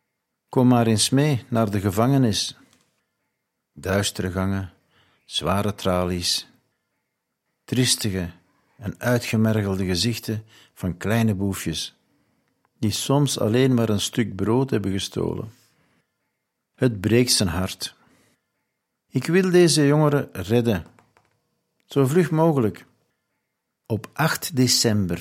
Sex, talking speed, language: male, 100 wpm, Dutch